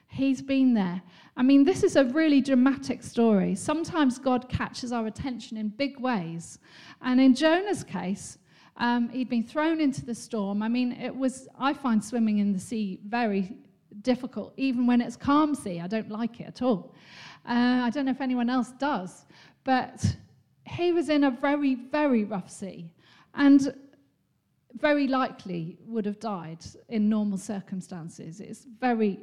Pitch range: 205-270 Hz